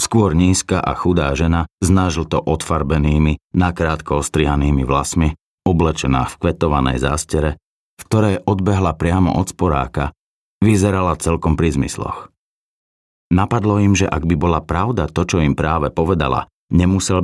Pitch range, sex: 75-100 Hz, male